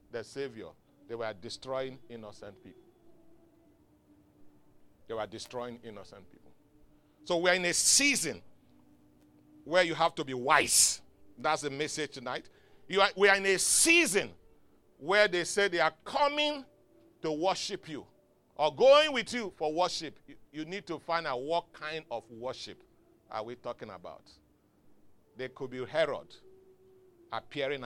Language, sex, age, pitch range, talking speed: English, male, 40-59, 115-180 Hz, 145 wpm